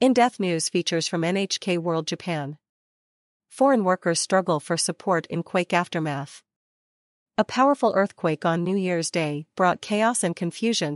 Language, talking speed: English, 140 wpm